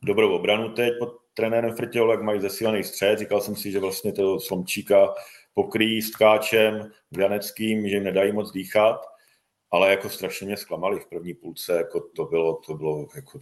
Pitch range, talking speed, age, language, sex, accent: 95-140 Hz, 180 wpm, 40-59, Czech, male, native